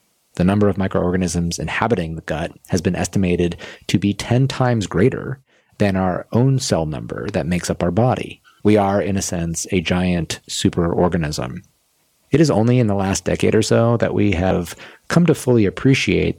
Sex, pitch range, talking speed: male, 90-115 Hz, 180 wpm